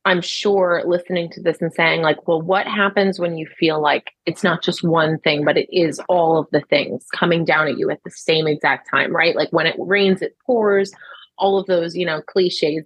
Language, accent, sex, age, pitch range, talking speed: English, American, female, 30-49, 160-205 Hz, 230 wpm